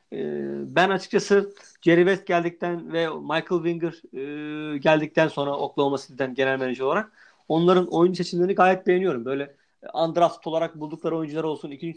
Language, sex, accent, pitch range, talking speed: Turkish, male, native, 150-185 Hz, 135 wpm